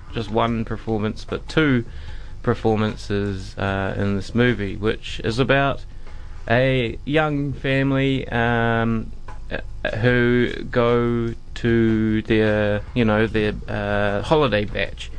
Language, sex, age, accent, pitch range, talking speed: English, male, 20-39, Australian, 105-120 Hz, 105 wpm